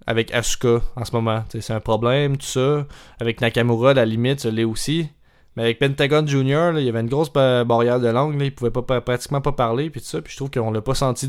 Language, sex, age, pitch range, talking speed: French, male, 20-39, 115-140 Hz, 255 wpm